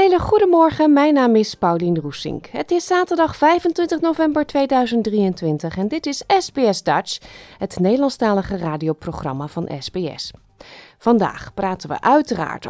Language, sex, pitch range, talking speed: Dutch, female, 180-275 Hz, 130 wpm